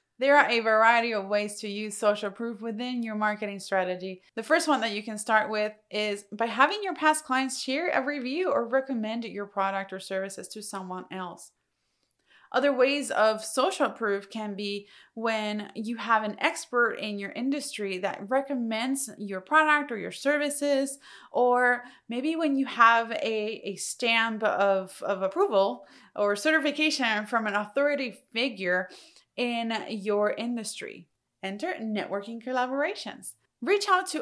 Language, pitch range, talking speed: English, 210-280 Hz, 155 wpm